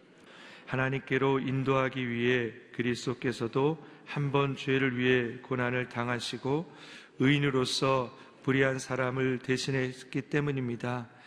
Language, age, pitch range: Korean, 40-59, 125-140 Hz